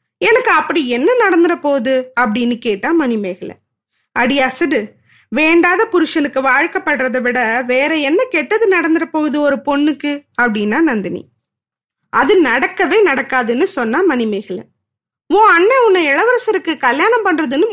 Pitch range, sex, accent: 255-375 Hz, female, native